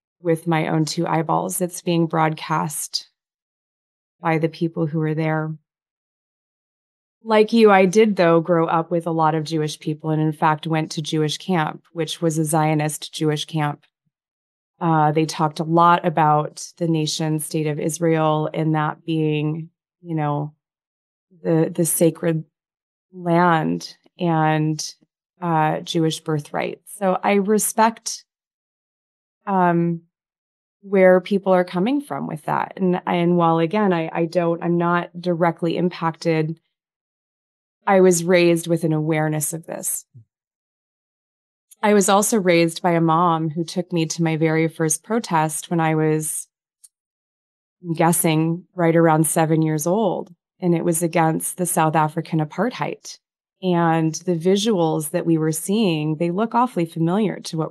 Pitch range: 155-175 Hz